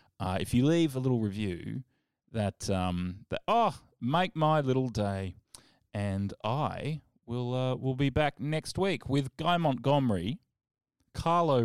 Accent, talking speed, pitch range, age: Australian, 145 wpm, 105-140 Hz, 20-39